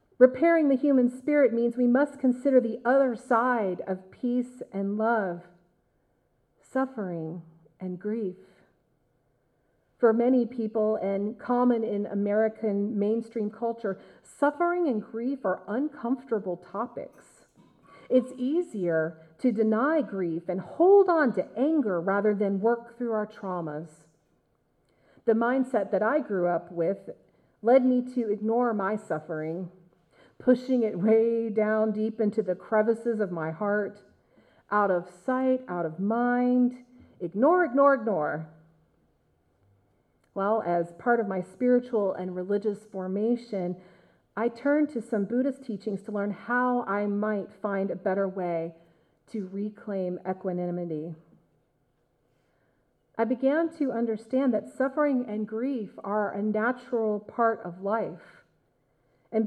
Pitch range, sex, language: 185-245 Hz, female, English